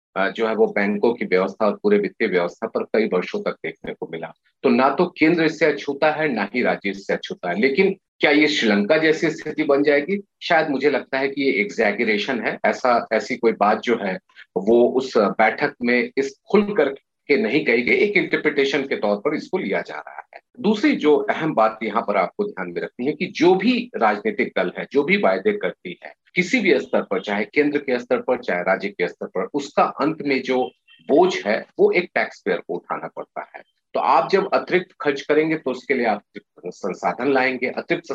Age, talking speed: 40-59, 210 wpm